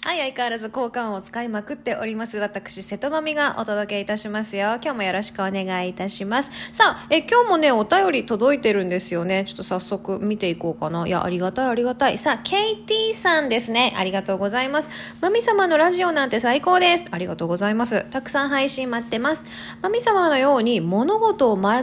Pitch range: 205-310 Hz